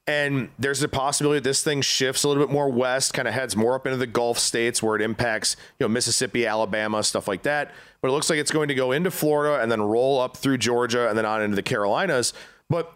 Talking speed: 255 wpm